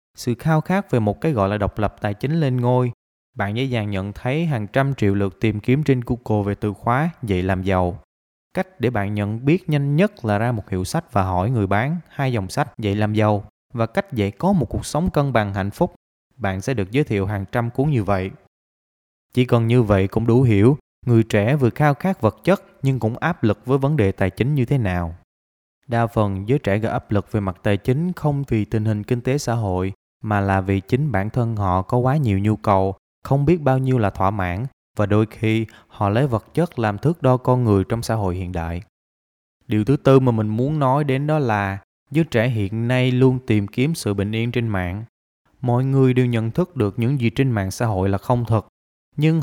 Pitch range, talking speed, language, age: 100-135 Hz, 235 wpm, Vietnamese, 20-39